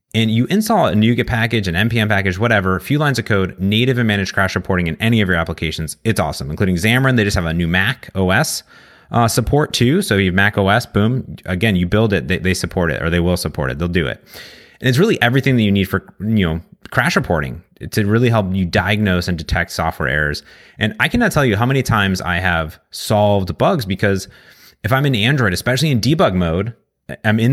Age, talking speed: 30-49, 230 wpm